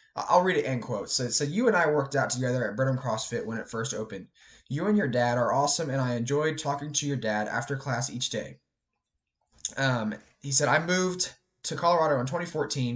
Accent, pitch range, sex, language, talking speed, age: American, 120-160 Hz, male, English, 220 wpm, 20-39